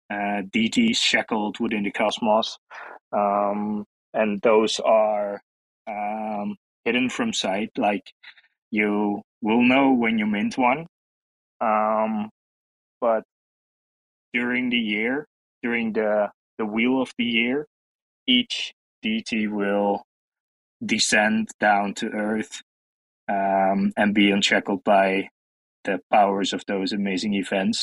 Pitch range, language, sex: 105-125 Hz, English, male